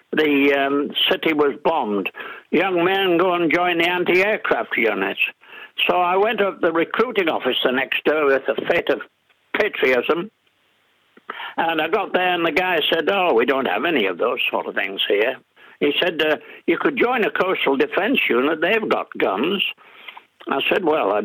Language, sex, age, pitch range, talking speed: English, male, 60-79, 140-205 Hz, 180 wpm